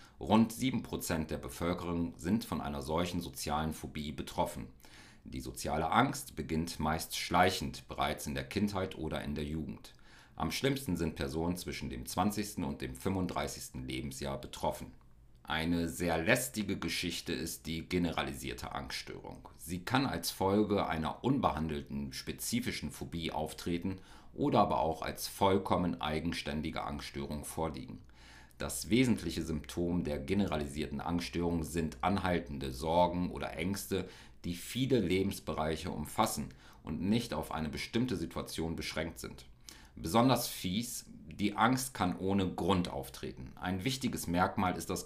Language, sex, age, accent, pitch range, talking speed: German, male, 50-69, German, 75-95 Hz, 130 wpm